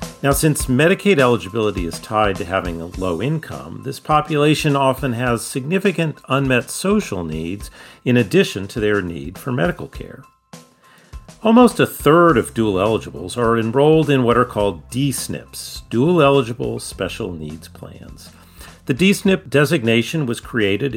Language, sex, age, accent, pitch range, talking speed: English, male, 40-59, American, 100-150 Hz, 145 wpm